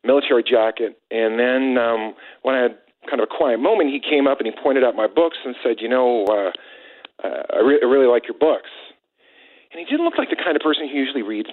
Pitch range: 120-165 Hz